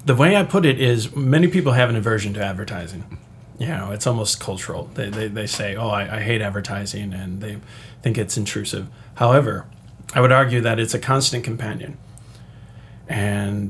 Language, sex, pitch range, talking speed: English, male, 110-125 Hz, 185 wpm